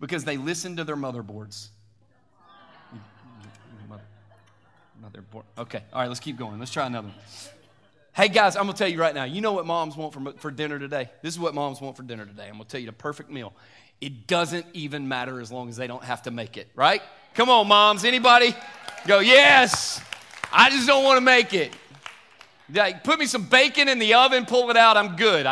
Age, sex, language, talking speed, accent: 30-49, male, English, 210 wpm, American